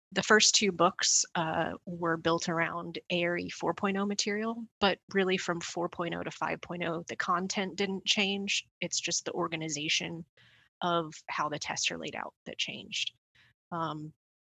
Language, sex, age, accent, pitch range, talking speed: English, female, 20-39, American, 165-190 Hz, 145 wpm